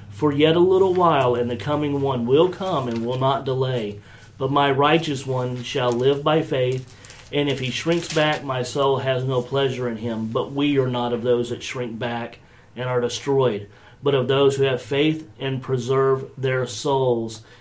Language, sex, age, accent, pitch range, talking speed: English, male, 40-59, American, 120-140 Hz, 195 wpm